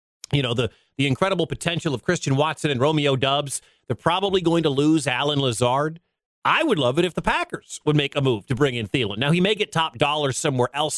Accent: American